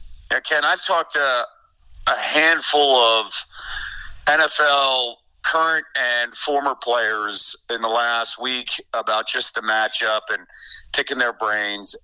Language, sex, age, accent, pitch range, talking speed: English, male, 50-69, American, 100-140 Hz, 125 wpm